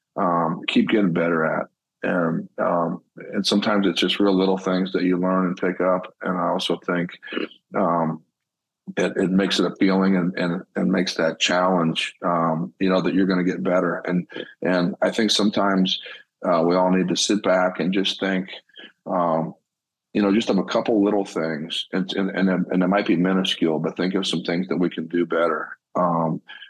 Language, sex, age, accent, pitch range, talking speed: English, male, 40-59, American, 85-95 Hz, 195 wpm